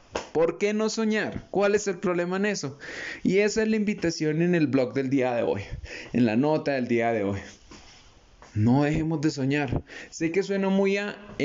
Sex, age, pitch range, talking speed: male, 20-39, 115-145 Hz, 205 wpm